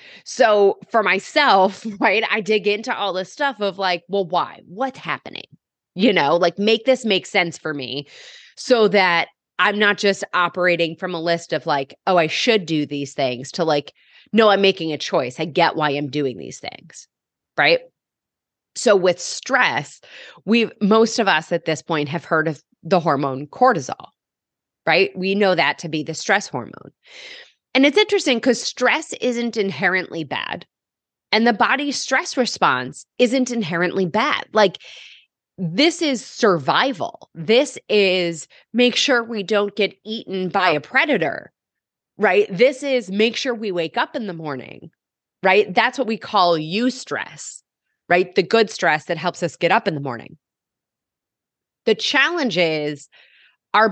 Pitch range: 170-235 Hz